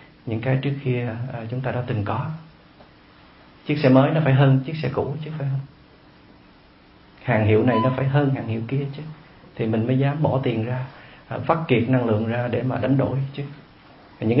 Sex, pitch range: male, 105-140 Hz